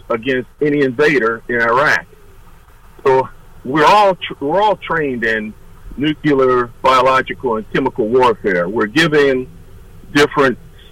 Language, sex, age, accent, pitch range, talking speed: English, male, 50-69, American, 115-150 Hz, 115 wpm